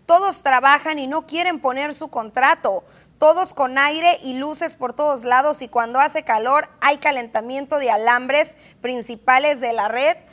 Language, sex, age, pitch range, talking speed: Spanish, female, 30-49, 245-315 Hz, 165 wpm